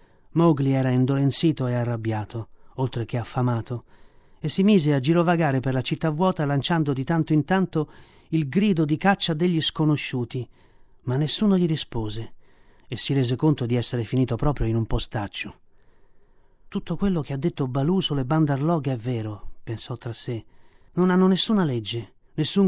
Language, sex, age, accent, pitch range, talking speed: Italian, male, 40-59, native, 125-160 Hz, 160 wpm